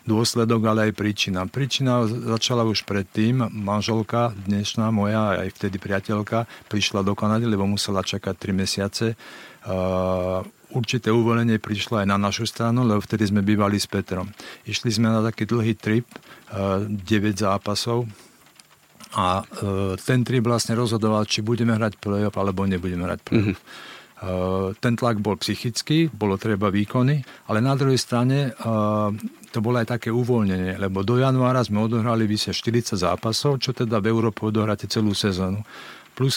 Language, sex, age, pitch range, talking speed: Slovak, male, 50-69, 100-115 Hz, 145 wpm